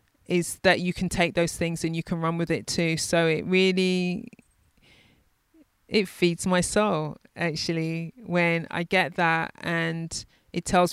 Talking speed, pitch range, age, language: 160 wpm, 165-190 Hz, 20-39, English